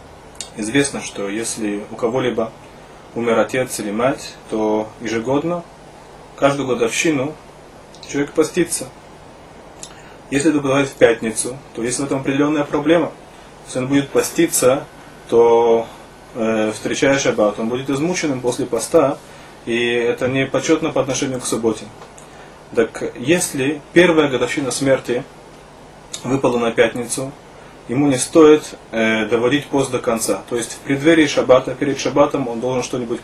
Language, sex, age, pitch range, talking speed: Russian, male, 30-49, 120-150 Hz, 130 wpm